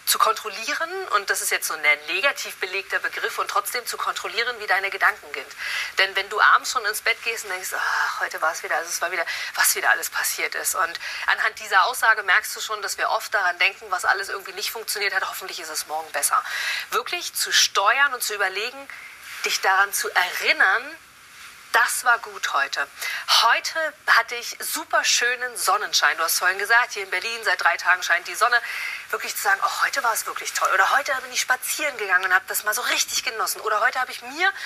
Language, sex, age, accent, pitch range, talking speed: German, female, 40-59, German, 195-290 Hz, 220 wpm